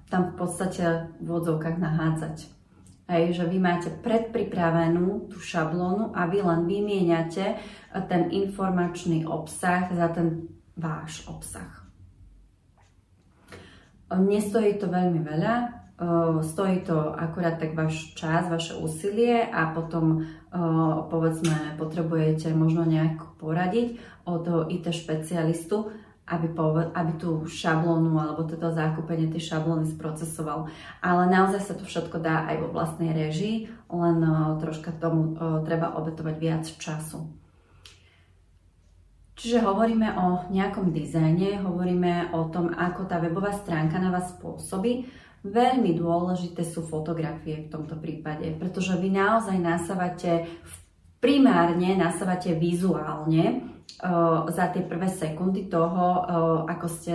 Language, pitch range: Slovak, 160-180 Hz